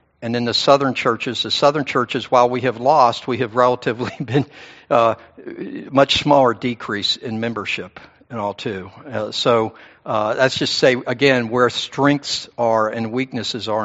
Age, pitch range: 60-79, 110-135 Hz